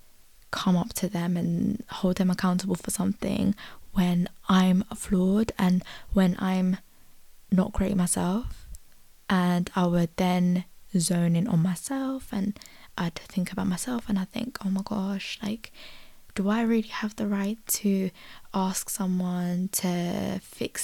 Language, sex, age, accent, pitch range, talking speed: English, female, 10-29, British, 185-210 Hz, 145 wpm